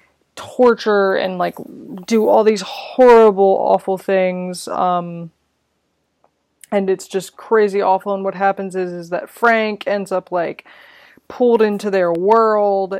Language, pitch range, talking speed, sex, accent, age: English, 175-200 Hz, 135 wpm, female, American, 20-39